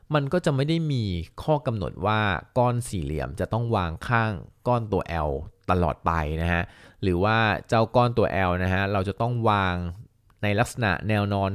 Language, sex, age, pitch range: Thai, male, 20-39, 90-115 Hz